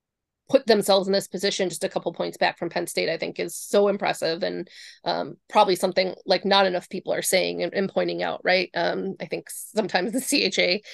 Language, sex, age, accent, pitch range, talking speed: English, female, 20-39, American, 180-205 Hz, 215 wpm